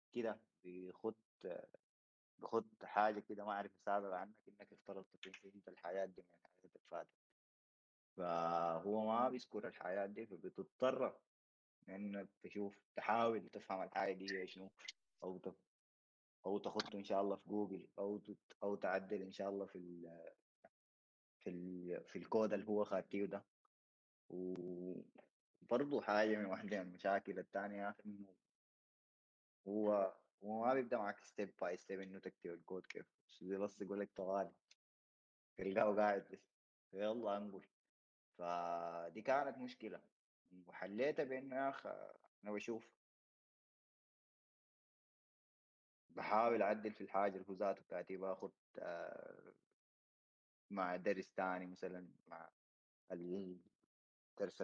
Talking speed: 115 wpm